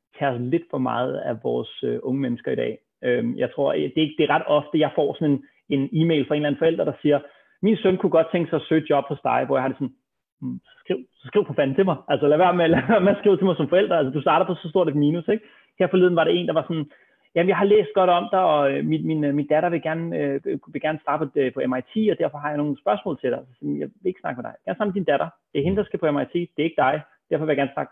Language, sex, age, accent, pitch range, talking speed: Danish, male, 30-49, native, 140-175 Hz, 305 wpm